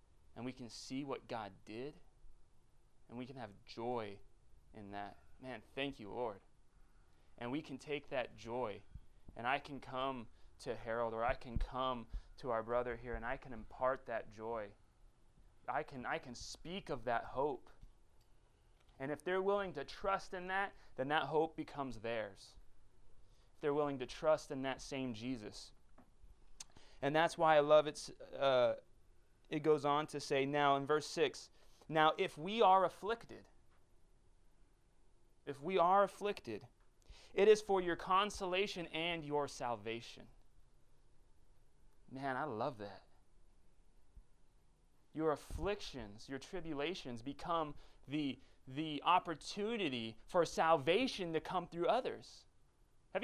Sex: male